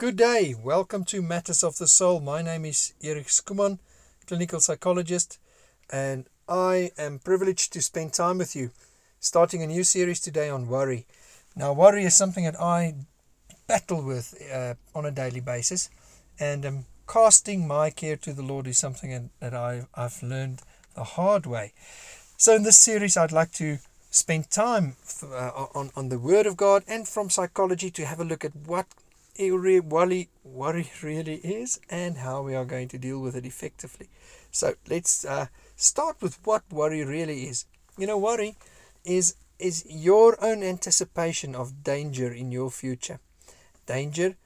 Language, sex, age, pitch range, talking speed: English, male, 50-69, 130-180 Hz, 165 wpm